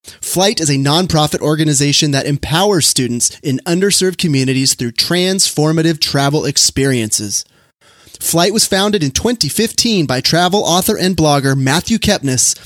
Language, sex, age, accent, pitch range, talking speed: English, male, 30-49, American, 135-180 Hz, 130 wpm